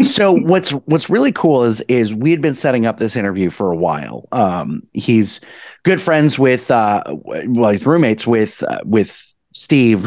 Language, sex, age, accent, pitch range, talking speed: English, male, 30-49, American, 115-155 Hz, 180 wpm